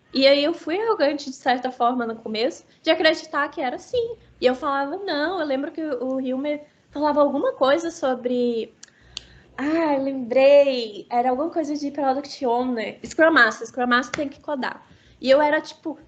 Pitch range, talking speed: 245-325 Hz, 175 wpm